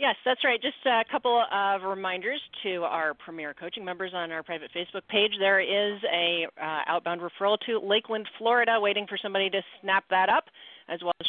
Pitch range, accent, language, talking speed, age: 175-240 Hz, American, English, 195 wpm, 40-59